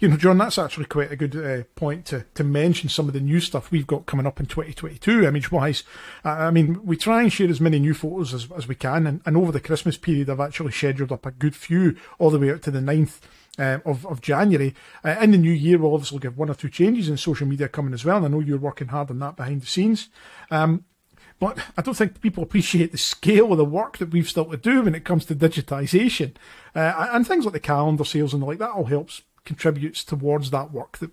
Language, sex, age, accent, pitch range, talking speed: English, male, 40-59, British, 145-175 Hz, 255 wpm